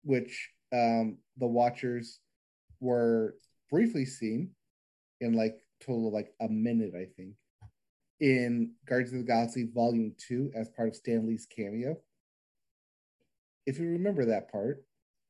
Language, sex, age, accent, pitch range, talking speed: English, male, 30-49, American, 115-140 Hz, 135 wpm